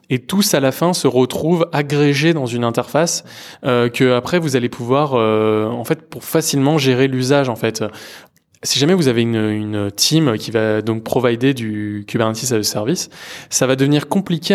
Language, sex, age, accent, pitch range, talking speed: French, male, 20-39, French, 115-145 Hz, 190 wpm